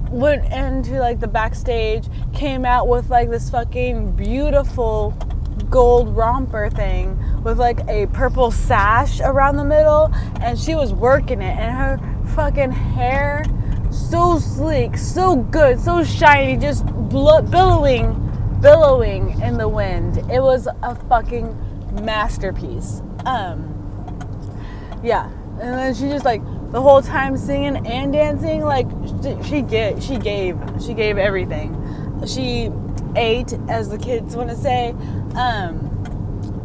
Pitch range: 105-155 Hz